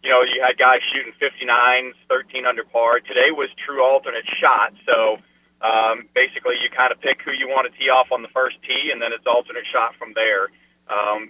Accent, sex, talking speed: American, male, 210 wpm